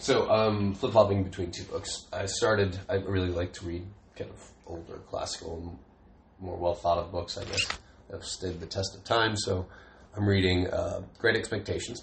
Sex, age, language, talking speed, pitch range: male, 30-49, English, 200 wpm, 85-100 Hz